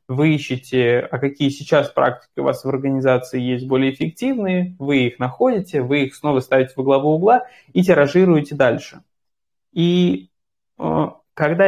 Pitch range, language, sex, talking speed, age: 130-165 Hz, Russian, male, 145 wpm, 20-39